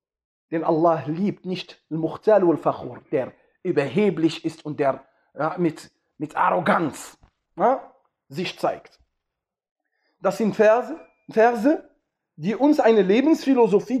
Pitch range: 185-300 Hz